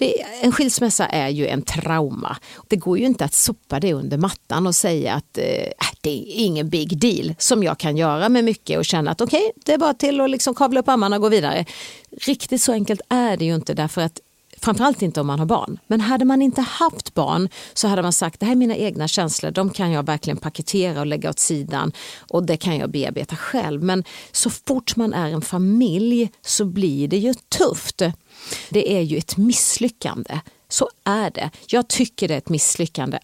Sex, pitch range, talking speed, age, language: female, 155-225 Hz, 215 wpm, 40-59, English